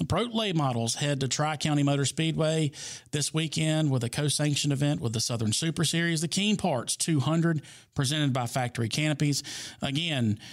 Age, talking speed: 40-59, 165 wpm